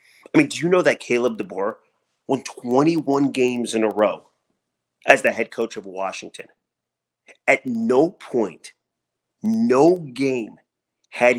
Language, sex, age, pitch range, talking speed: English, male, 30-49, 100-150 Hz, 135 wpm